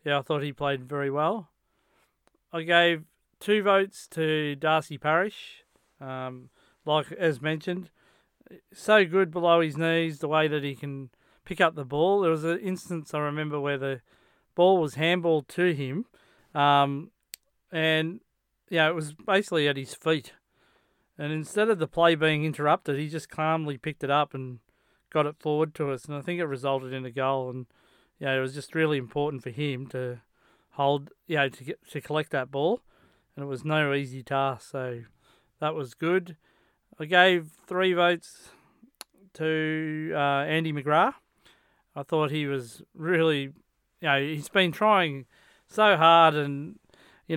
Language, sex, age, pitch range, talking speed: English, male, 40-59, 140-165 Hz, 170 wpm